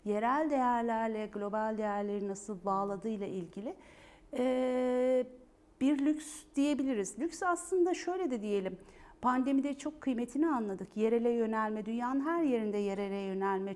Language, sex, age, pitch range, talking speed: Turkish, female, 50-69, 210-275 Hz, 120 wpm